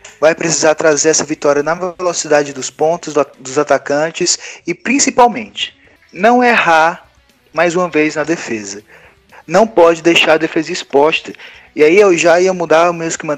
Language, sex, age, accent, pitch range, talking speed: Portuguese, male, 20-39, Brazilian, 150-180 Hz, 155 wpm